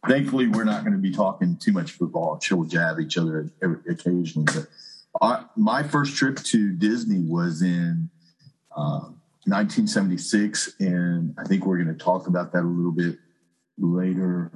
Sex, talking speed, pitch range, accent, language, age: male, 160 wpm, 85-105 Hz, American, English, 40-59